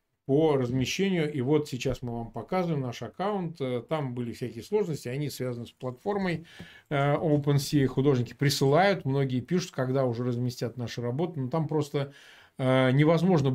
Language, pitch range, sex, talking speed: Russian, 125-155 Hz, male, 140 wpm